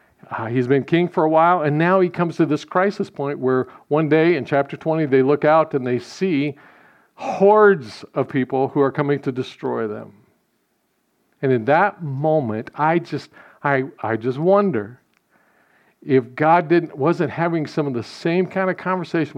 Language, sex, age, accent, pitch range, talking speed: English, male, 50-69, American, 130-165 Hz, 180 wpm